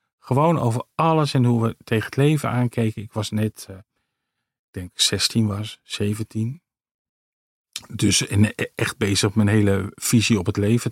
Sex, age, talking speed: male, 40-59, 155 wpm